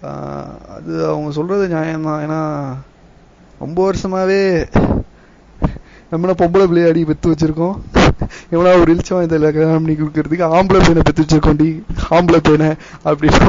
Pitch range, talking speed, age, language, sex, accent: 150-175 Hz, 105 wpm, 20-39, Tamil, male, native